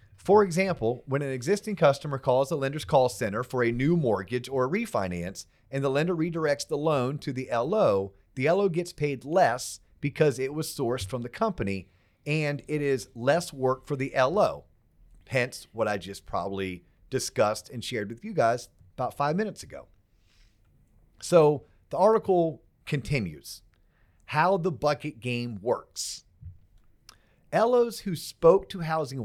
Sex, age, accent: male, 40-59, American